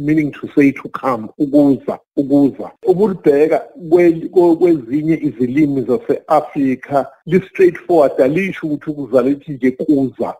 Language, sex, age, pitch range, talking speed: English, male, 50-69, 130-175 Hz, 120 wpm